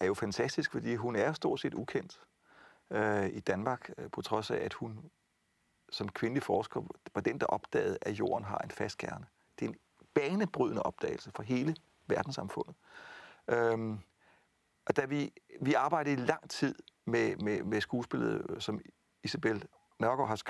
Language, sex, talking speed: Danish, male, 160 wpm